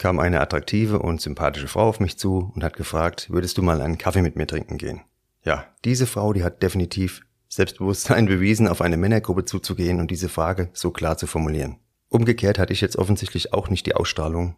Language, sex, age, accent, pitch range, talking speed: German, male, 30-49, German, 85-100 Hz, 200 wpm